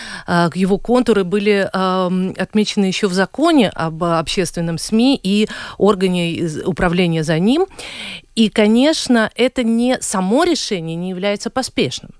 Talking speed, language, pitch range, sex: 125 wpm, Russian, 170-225 Hz, female